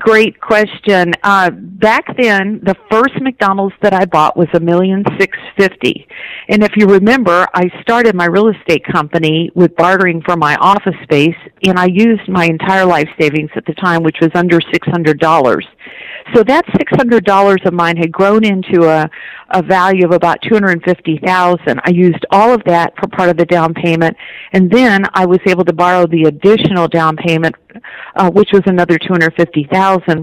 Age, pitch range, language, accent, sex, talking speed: 50-69, 170-195 Hz, English, American, female, 180 wpm